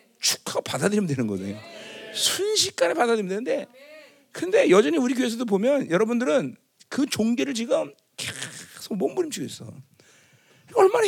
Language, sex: Korean, male